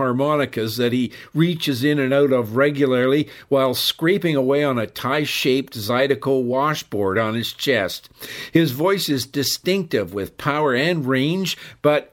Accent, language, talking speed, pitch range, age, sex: American, English, 145 wpm, 125-160 Hz, 50-69, male